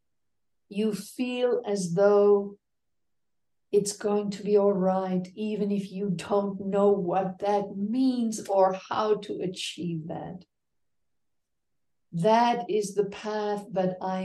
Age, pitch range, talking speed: 50-69, 185-225 Hz, 120 wpm